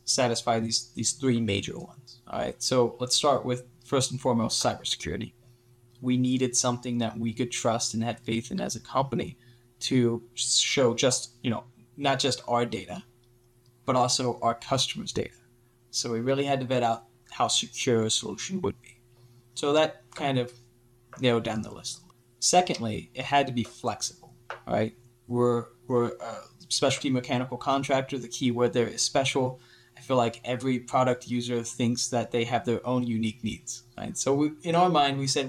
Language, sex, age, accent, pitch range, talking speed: English, male, 20-39, American, 120-130 Hz, 180 wpm